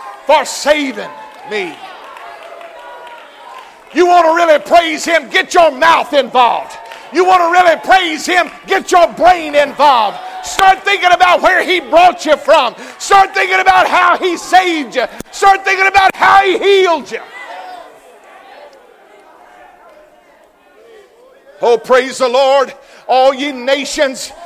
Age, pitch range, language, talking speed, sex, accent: 50-69, 300-360 Hz, English, 130 wpm, male, American